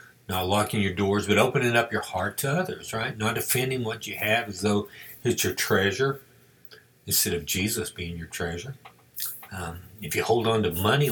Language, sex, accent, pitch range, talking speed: English, male, American, 95-120 Hz, 190 wpm